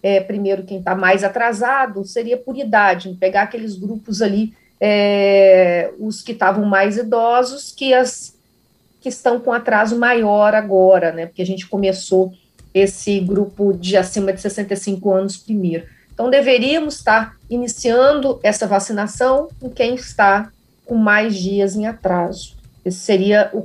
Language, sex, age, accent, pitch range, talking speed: Portuguese, female, 40-59, Brazilian, 195-245 Hz, 145 wpm